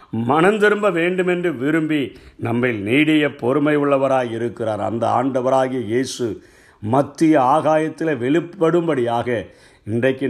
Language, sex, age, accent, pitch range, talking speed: Tamil, male, 50-69, native, 135-170 Hz, 85 wpm